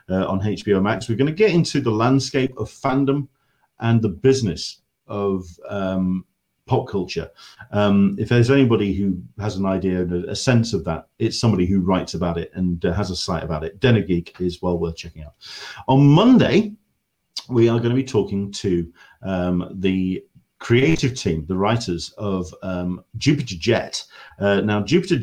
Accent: British